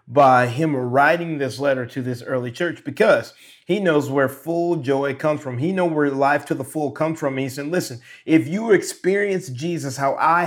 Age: 30-49